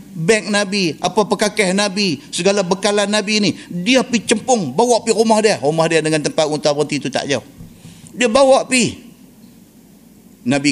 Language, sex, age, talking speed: Malay, male, 50-69, 155 wpm